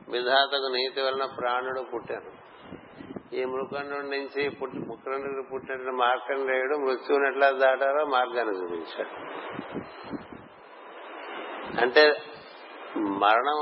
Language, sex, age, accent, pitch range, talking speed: Telugu, male, 60-79, native, 125-140 Hz, 80 wpm